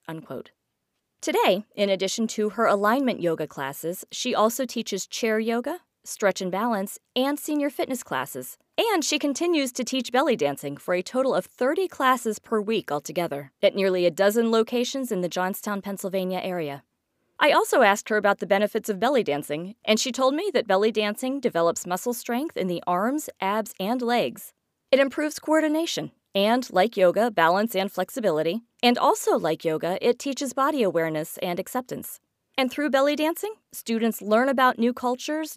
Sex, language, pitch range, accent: female, English, 190-265 Hz, American